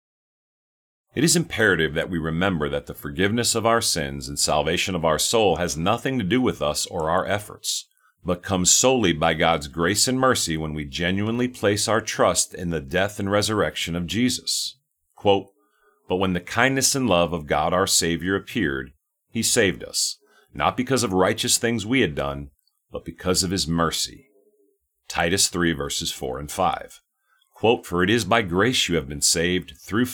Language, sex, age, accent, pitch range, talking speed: English, male, 40-59, American, 80-115 Hz, 180 wpm